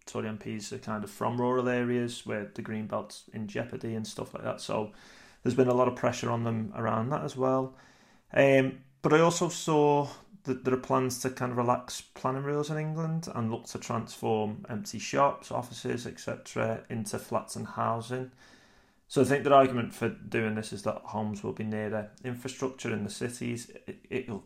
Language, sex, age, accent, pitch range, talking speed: English, male, 30-49, British, 110-130 Hz, 200 wpm